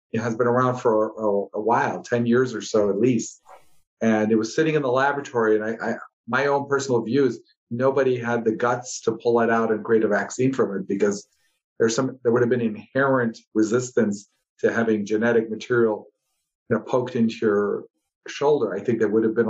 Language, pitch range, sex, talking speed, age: English, 110-135 Hz, male, 205 wpm, 50-69